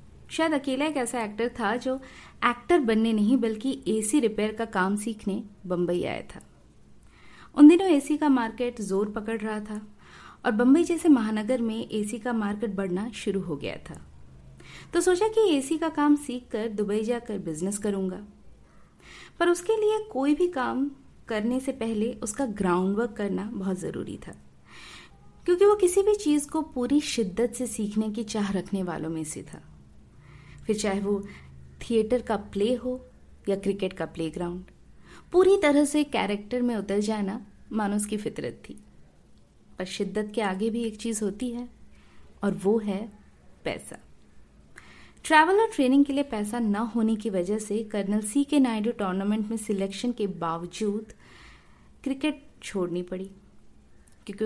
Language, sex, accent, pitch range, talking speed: Hindi, female, native, 195-255 Hz, 160 wpm